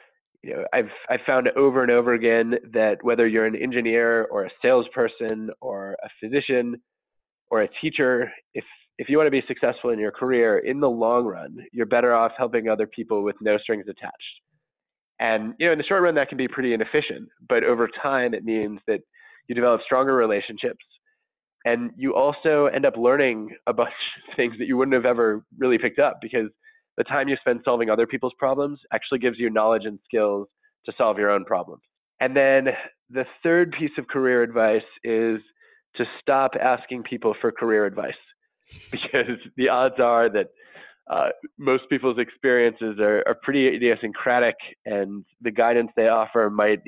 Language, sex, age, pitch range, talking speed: English, male, 20-39, 110-135 Hz, 180 wpm